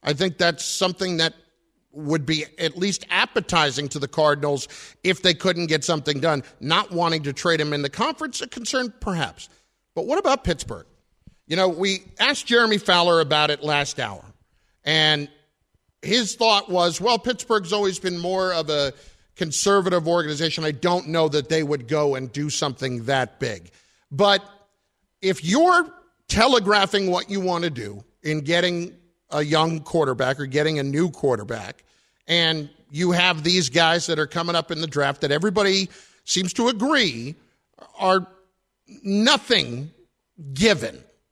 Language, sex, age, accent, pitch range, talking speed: English, male, 50-69, American, 145-195 Hz, 155 wpm